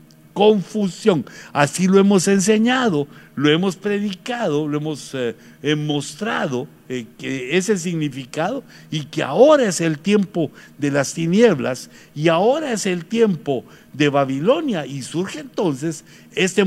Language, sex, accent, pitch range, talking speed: Spanish, male, Mexican, 140-210 Hz, 130 wpm